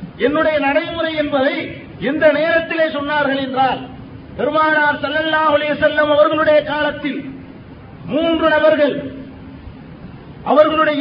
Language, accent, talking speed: Tamil, native, 80 wpm